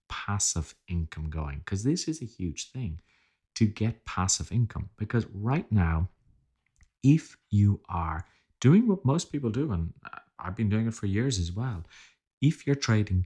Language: English